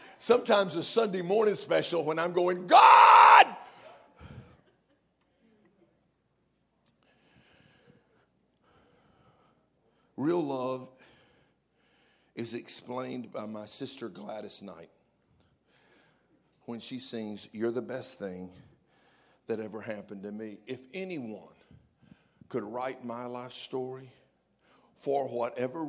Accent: American